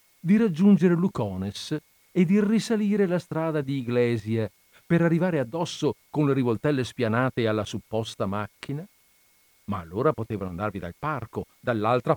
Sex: male